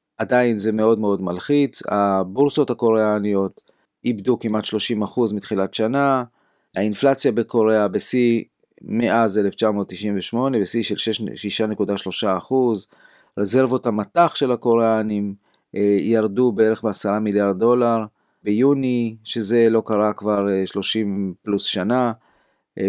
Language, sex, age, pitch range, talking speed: Hebrew, male, 30-49, 100-120 Hz, 105 wpm